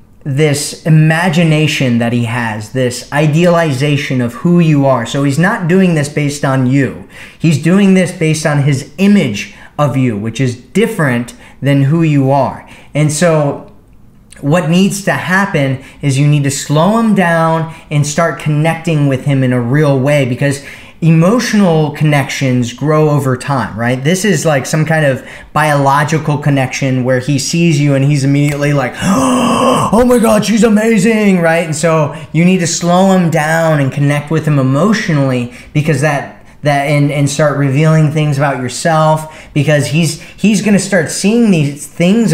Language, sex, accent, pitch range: English, male, American, 140-170 Hz